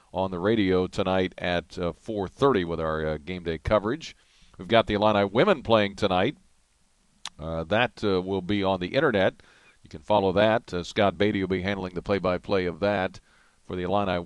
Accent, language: American, English